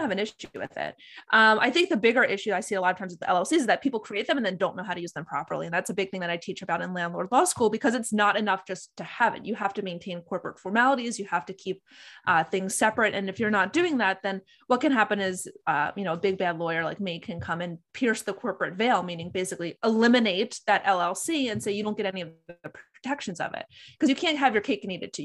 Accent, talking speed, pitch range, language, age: American, 290 wpm, 185-230 Hz, English, 20-39